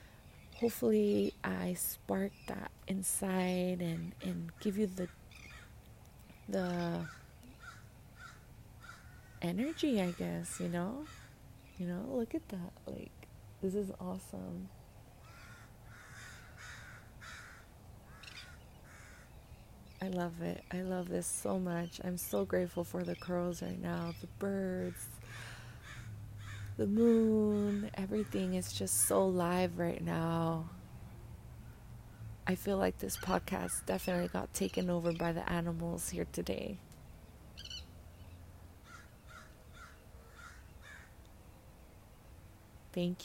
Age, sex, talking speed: 30-49, female, 95 wpm